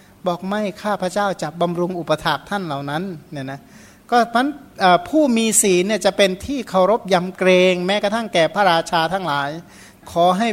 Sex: male